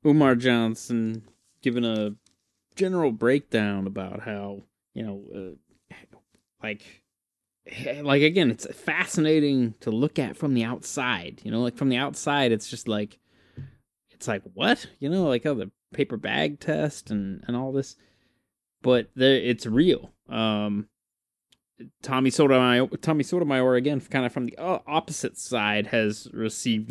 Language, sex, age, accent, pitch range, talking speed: English, male, 20-39, American, 110-130 Hz, 140 wpm